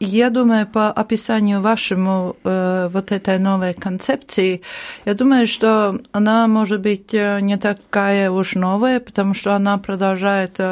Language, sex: Russian, female